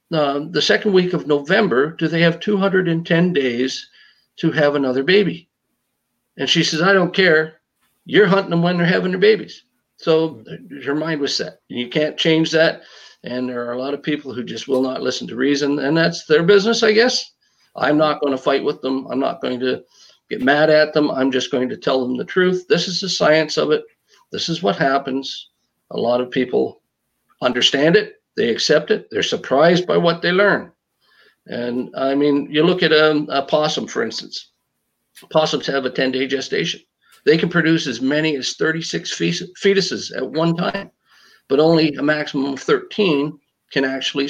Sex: male